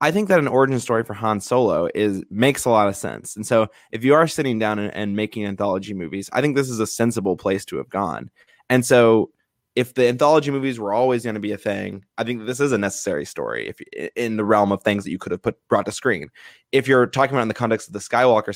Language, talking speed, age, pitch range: English, 265 wpm, 20-39, 105-125 Hz